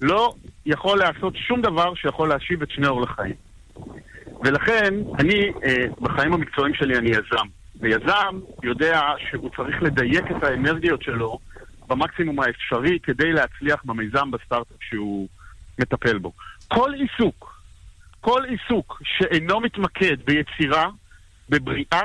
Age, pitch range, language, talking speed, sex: 50-69, 120-180 Hz, Hebrew, 120 wpm, male